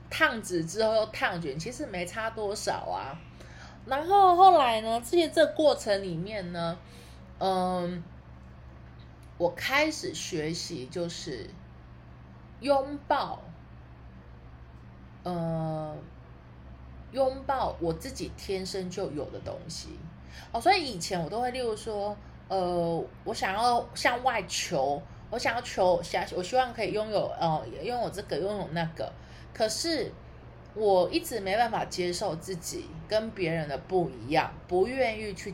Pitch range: 145-225 Hz